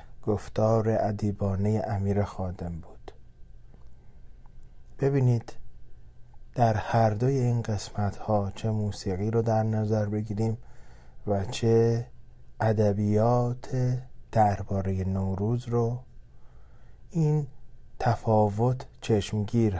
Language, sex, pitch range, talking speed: Persian, male, 100-120 Hz, 80 wpm